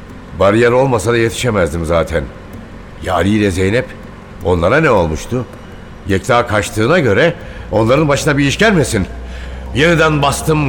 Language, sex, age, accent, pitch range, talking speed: Turkish, male, 60-79, native, 85-115 Hz, 120 wpm